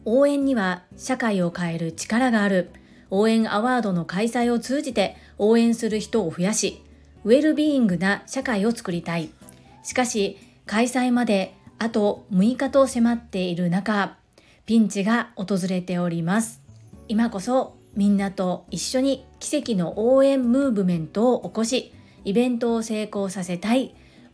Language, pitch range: Japanese, 195-240 Hz